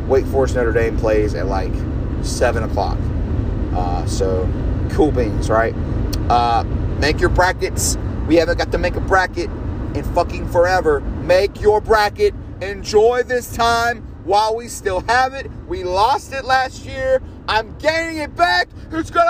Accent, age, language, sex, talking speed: American, 40-59, English, male, 150 wpm